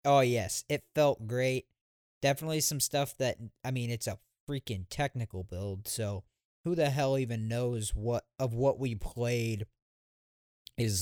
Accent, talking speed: American, 150 wpm